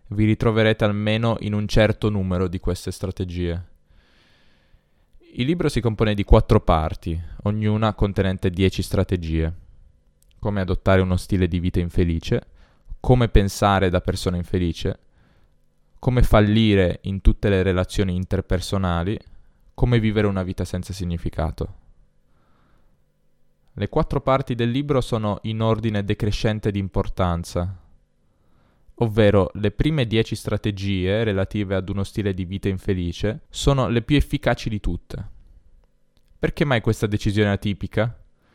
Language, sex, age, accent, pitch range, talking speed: Italian, male, 10-29, native, 90-110 Hz, 125 wpm